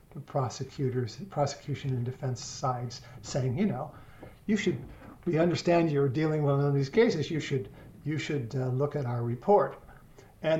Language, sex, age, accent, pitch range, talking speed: English, male, 50-69, American, 140-165 Hz, 165 wpm